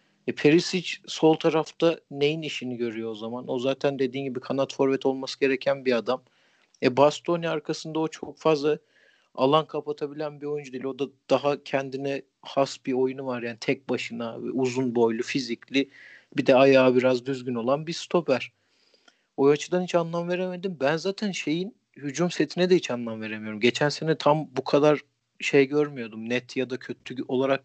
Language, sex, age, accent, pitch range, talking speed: Turkish, male, 50-69, native, 125-155 Hz, 170 wpm